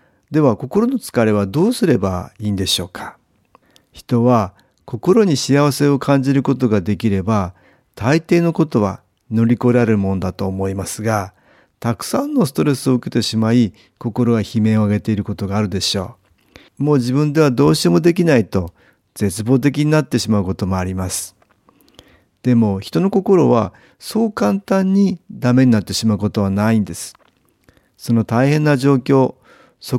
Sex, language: male, Japanese